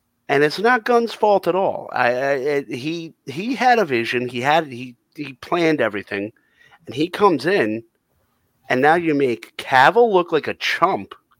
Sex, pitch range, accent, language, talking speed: male, 135-230 Hz, American, English, 180 wpm